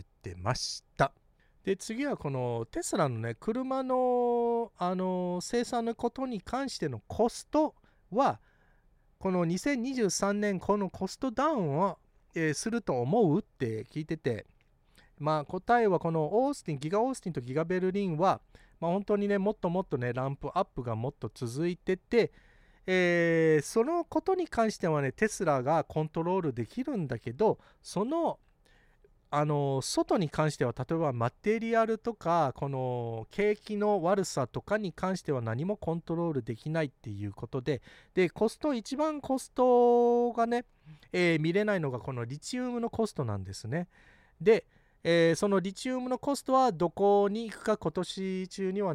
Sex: male